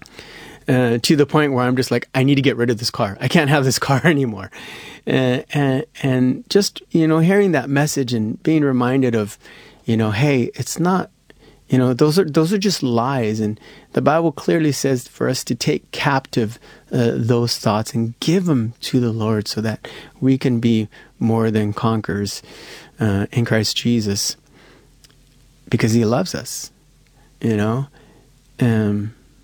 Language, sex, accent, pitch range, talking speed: English, male, American, 115-140 Hz, 175 wpm